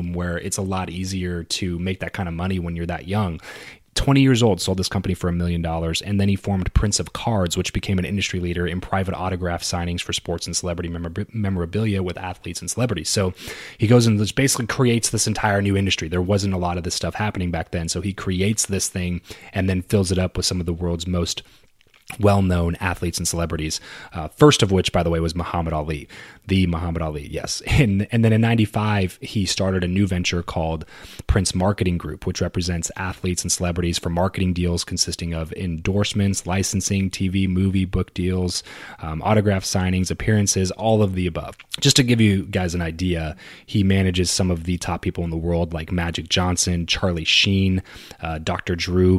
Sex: male